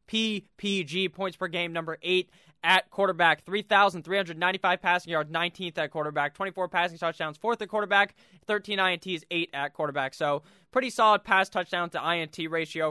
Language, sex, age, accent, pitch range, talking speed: English, male, 20-39, American, 165-200 Hz, 150 wpm